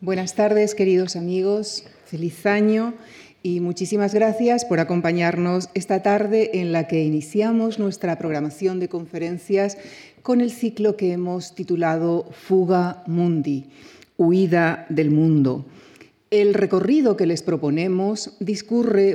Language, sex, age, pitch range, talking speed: Spanish, female, 40-59, 170-210 Hz, 120 wpm